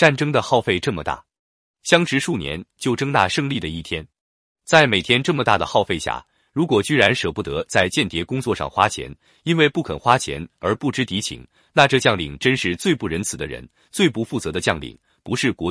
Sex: male